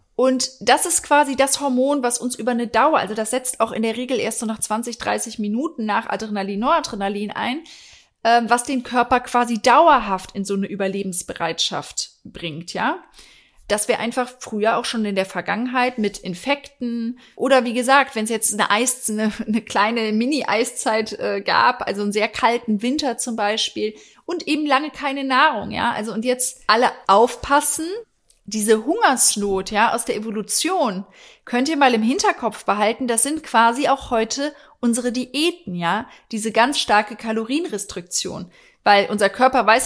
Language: German